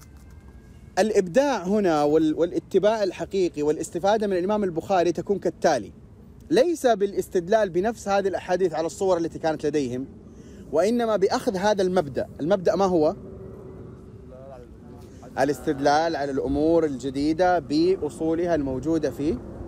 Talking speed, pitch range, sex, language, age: 105 wpm, 145-180 Hz, male, Arabic, 30-49